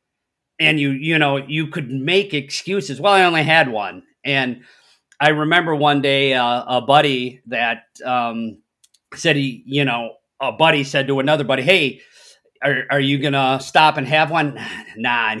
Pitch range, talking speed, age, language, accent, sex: 120-150 Hz, 175 wpm, 40-59, English, American, male